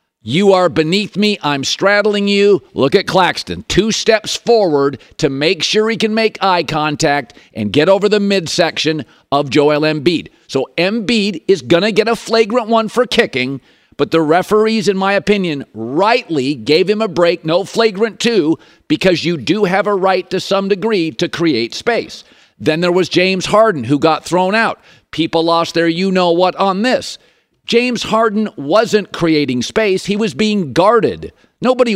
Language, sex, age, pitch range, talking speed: English, male, 50-69, 160-215 Hz, 170 wpm